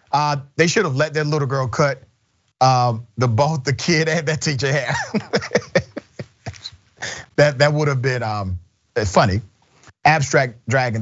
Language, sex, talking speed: English, male, 145 wpm